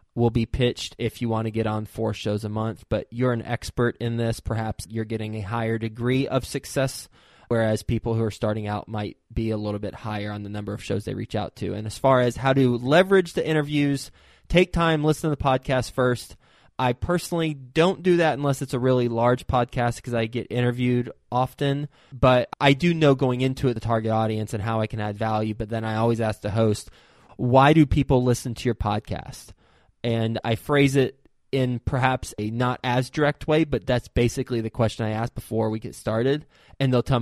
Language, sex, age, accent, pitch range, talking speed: English, male, 20-39, American, 110-130 Hz, 220 wpm